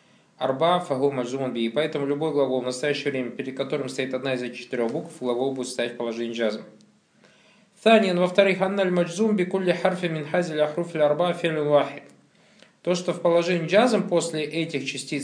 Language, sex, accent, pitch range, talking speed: Russian, male, native, 135-175 Hz, 165 wpm